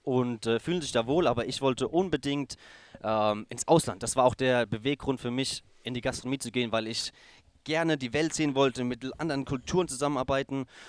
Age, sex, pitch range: 30-49, male, 115-140 Hz